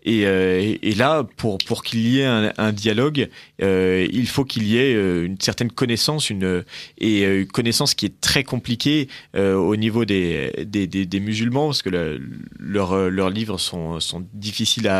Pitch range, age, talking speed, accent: 95-120 Hz, 30-49, 185 wpm, French